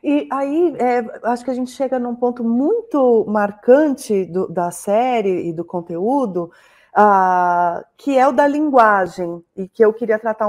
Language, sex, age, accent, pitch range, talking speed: Portuguese, female, 30-49, Brazilian, 190-255 Hz, 165 wpm